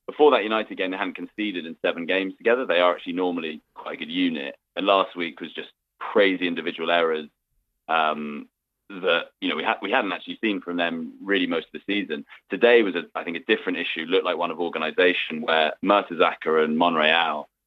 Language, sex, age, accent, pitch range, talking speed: English, male, 30-49, British, 90-125 Hz, 205 wpm